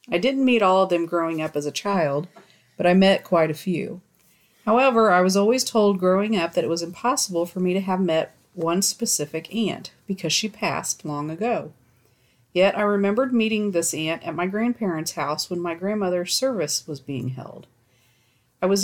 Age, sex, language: 40-59, female, English